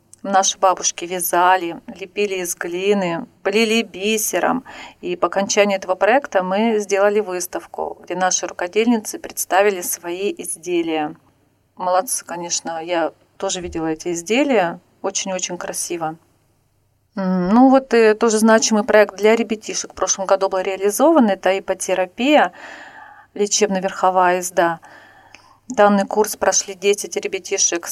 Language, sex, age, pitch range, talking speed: Russian, female, 40-59, 180-215 Hz, 110 wpm